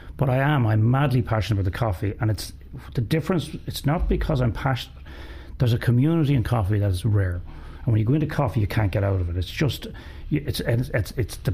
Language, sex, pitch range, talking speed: English, male, 95-130 Hz, 230 wpm